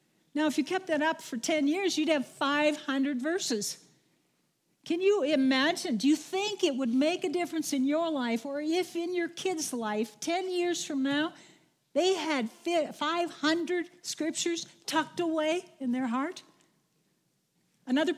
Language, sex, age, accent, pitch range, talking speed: English, female, 60-79, American, 245-320 Hz, 155 wpm